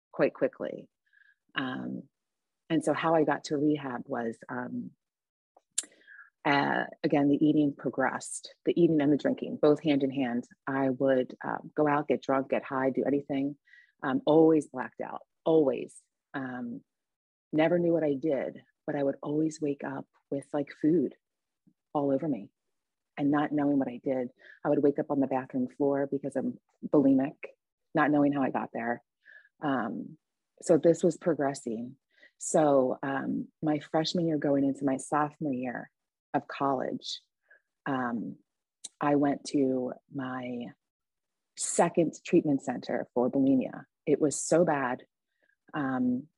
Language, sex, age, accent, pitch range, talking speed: English, female, 30-49, American, 135-155 Hz, 150 wpm